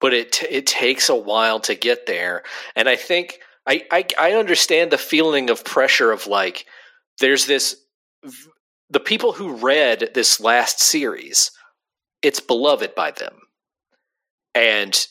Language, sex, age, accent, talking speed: English, male, 40-59, American, 150 wpm